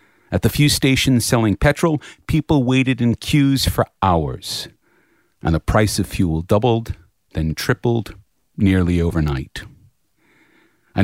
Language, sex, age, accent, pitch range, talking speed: English, male, 50-69, American, 100-130 Hz, 125 wpm